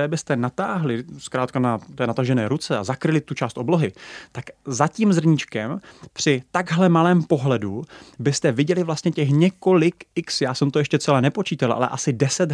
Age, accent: 30-49, native